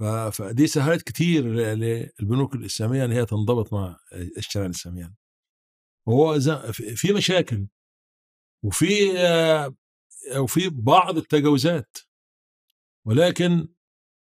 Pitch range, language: 110-145 Hz, Arabic